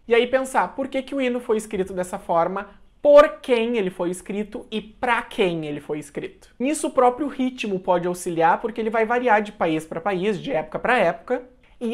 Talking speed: 210 wpm